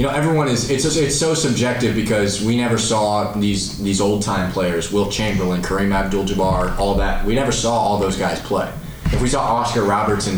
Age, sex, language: 20-39, male, English